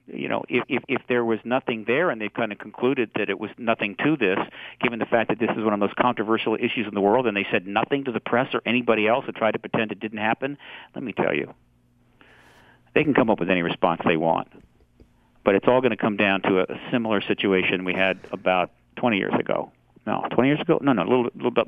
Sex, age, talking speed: male, 50-69, 260 wpm